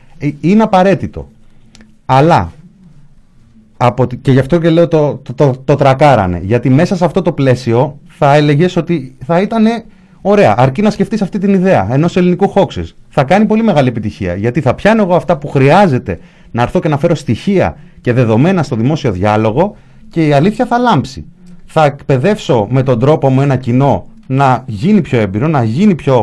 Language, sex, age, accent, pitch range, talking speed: Greek, male, 30-49, native, 125-180 Hz, 180 wpm